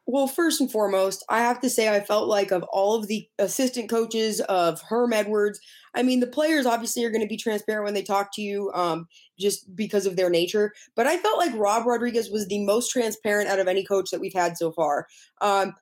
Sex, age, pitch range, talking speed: female, 20-39, 200-245 Hz, 230 wpm